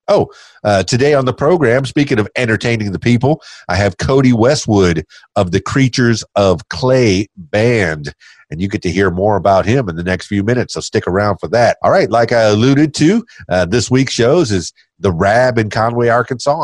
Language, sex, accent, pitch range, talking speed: English, male, American, 100-125 Hz, 200 wpm